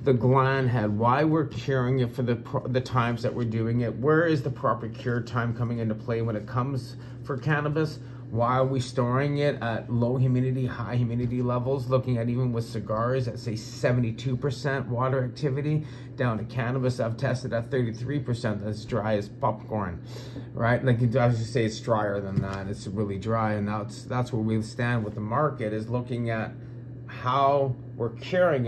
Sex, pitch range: male, 120-135 Hz